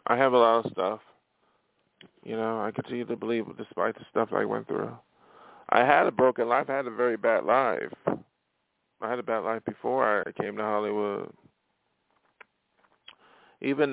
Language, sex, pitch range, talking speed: English, male, 95-105 Hz, 170 wpm